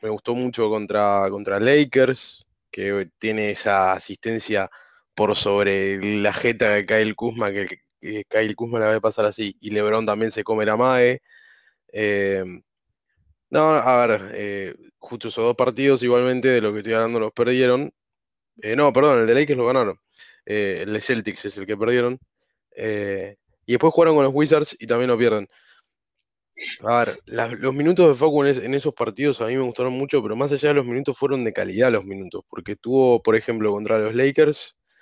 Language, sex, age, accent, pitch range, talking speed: Spanish, male, 20-39, Argentinian, 105-135 Hz, 190 wpm